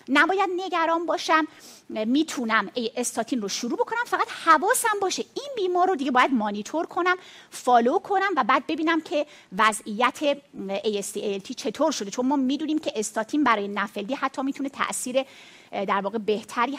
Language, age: Persian, 30-49